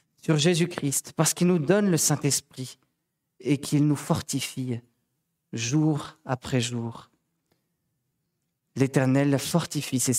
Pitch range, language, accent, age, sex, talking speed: 135-170 Hz, French, French, 40-59, male, 105 wpm